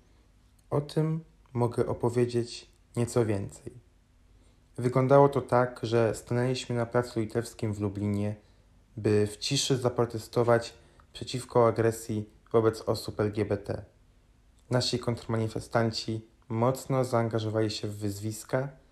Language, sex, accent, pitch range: Polish, male, native, 105-120 Hz